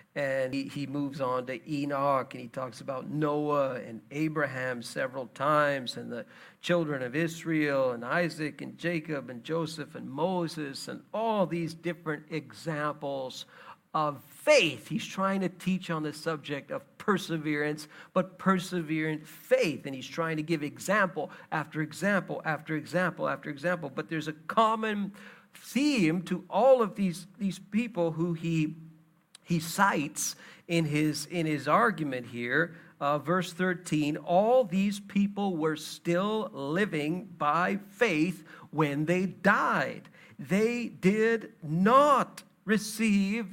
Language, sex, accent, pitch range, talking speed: English, male, American, 150-200 Hz, 135 wpm